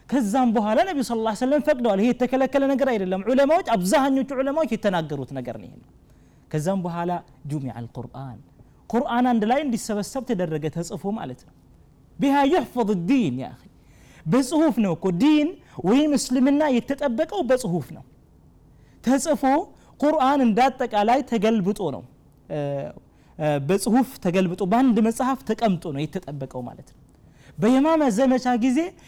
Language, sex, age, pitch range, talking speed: Amharic, male, 30-49, 195-270 Hz, 120 wpm